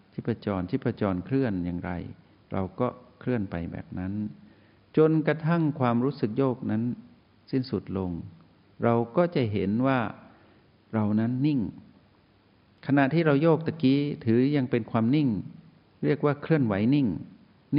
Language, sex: Thai, male